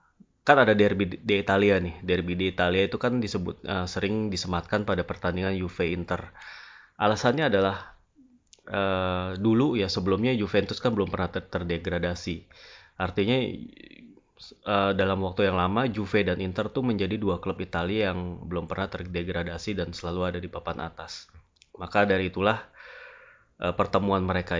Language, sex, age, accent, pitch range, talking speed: Indonesian, male, 20-39, native, 90-105 Hz, 150 wpm